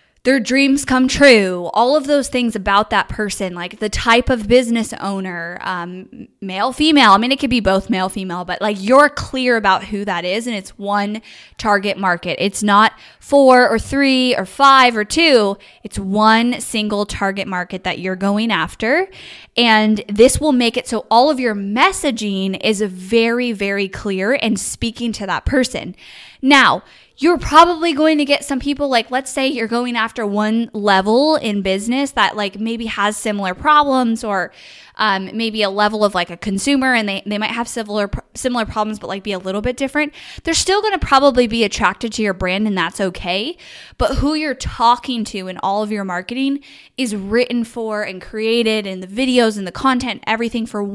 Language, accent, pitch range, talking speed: English, American, 195-250 Hz, 190 wpm